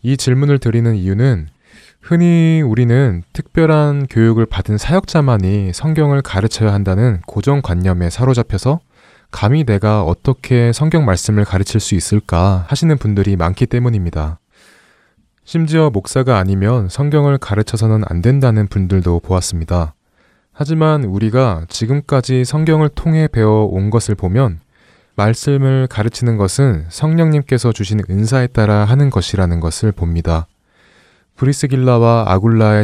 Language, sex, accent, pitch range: Korean, male, native, 95-130 Hz